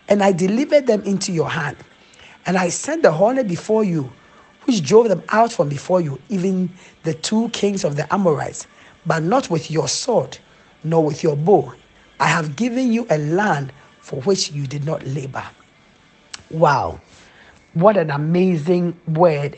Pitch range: 160-220 Hz